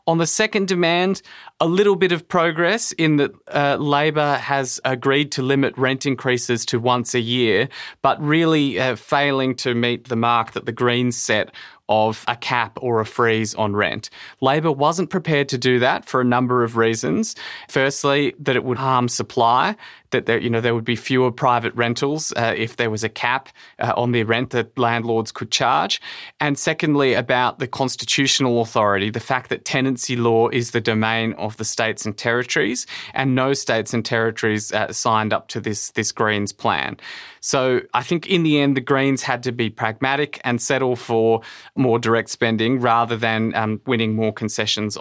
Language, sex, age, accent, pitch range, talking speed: English, male, 20-39, Australian, 115-140 Hz, 185 wpm